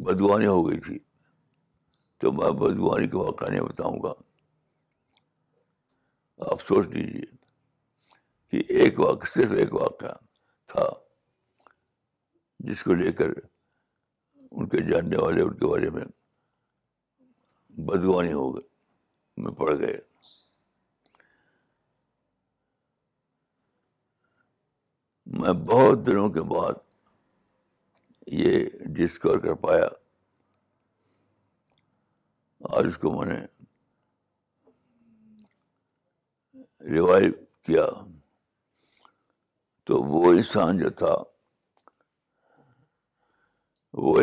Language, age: Urdu, 60-79